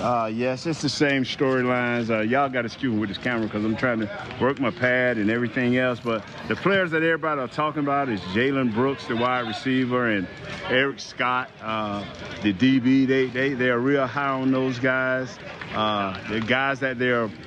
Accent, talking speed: American, 205 wpm